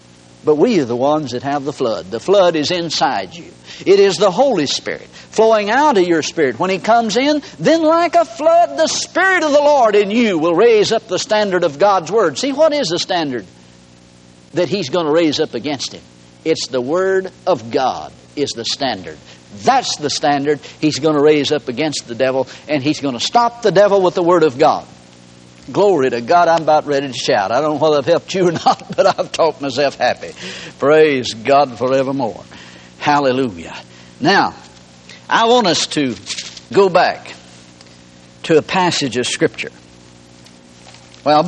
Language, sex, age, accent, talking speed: English, male, 60-79, American, 190 wpm